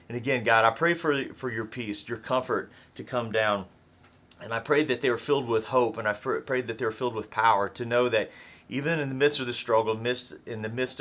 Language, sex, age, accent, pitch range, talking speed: English, male, 30-49, American, 110-130 Hz, 245 wpm